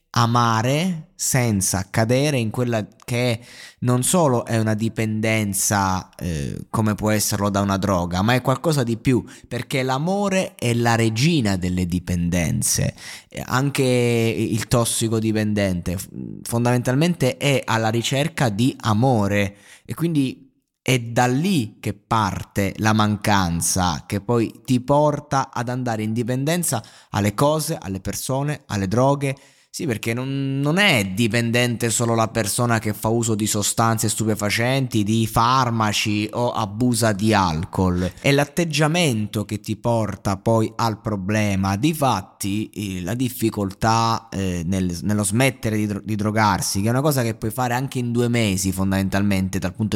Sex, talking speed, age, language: male, 140 wpm, 20-39, Italian